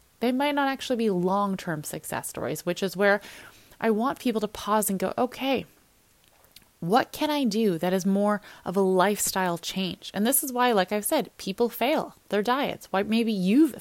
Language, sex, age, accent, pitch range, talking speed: English, female, 20-39, American, 180-235 Hz, 195 wpm